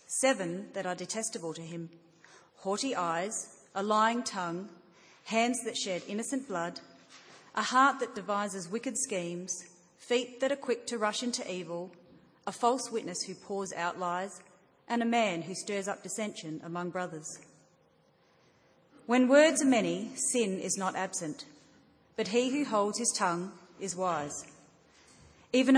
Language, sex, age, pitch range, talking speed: English, female, 40-59, 180-235 Hz, 145 wpm